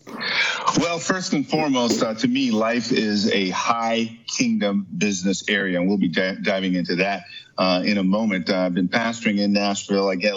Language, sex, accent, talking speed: English, male, American, 190 wpm